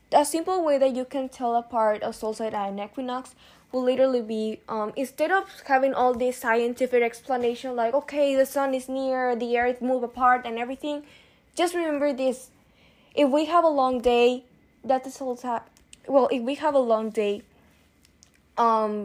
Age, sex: 10-29, female